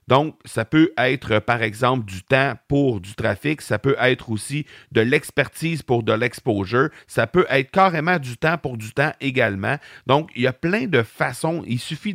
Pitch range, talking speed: 115-155 Hz, 195 wpm